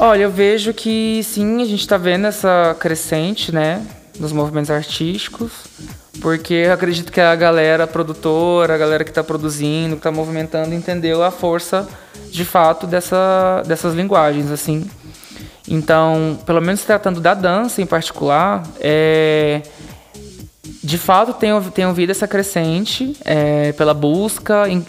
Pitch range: 160-200 Hz